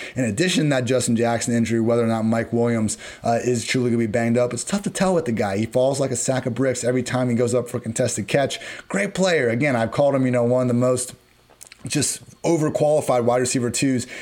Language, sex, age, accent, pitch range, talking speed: English, male, 30-49, American, 115-135 Hz, 255 wpm